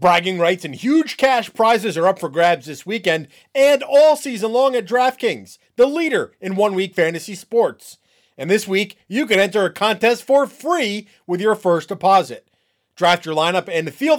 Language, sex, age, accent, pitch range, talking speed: English, male, 30-49, American, 170-230 Hz, 180 wpm